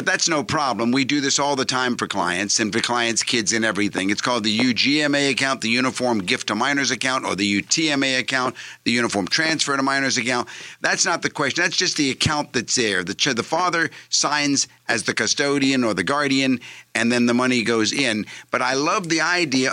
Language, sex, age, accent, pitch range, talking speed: English, male, 50-69, American, 110-140 Hz, 215 wpm